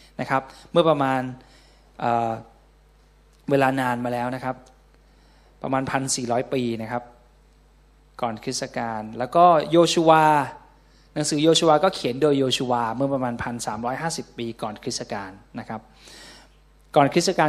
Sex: male